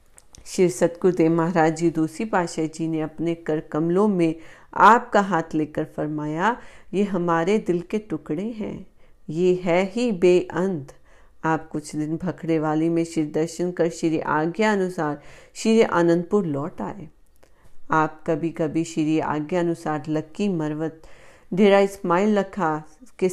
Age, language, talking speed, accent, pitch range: 40-59, Hindi, 135 wpm, native, 155-190 Hz